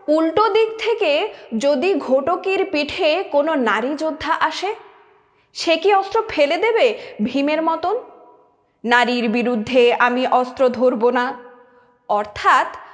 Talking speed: 110 wpm